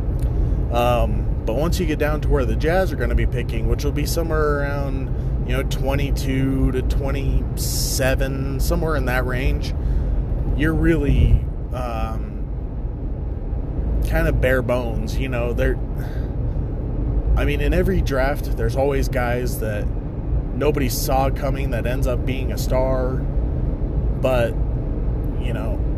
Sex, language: male, English